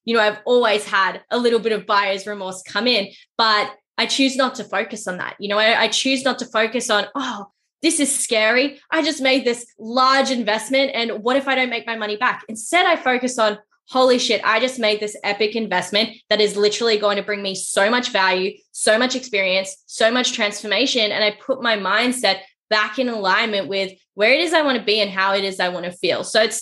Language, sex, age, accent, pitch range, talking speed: English, female, 10-29, Australian, 205-240 Hz, 230 wpm